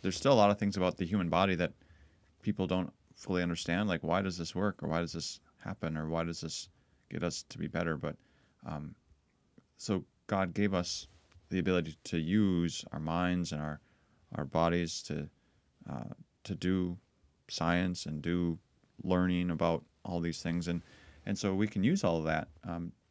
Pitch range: 80-95 Hz